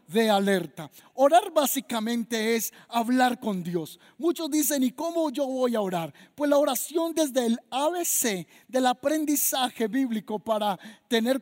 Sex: male